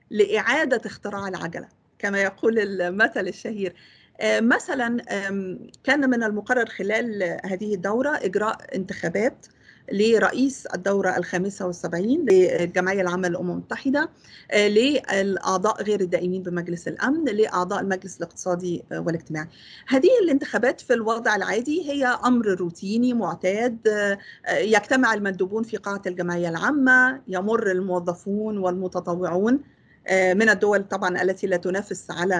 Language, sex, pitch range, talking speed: Arabic, female, 185-250 Hz, 105 wpm